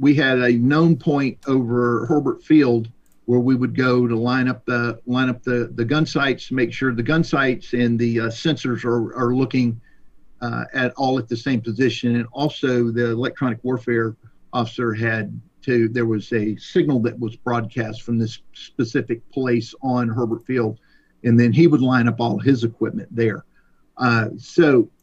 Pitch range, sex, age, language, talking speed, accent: 120-140 Hz, male, 50-69, English, 180 wpm, American